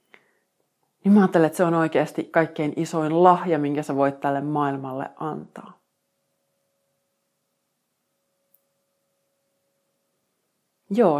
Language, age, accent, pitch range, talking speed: Finnish, 30-49, native, 150-180 Hz, 90 wpm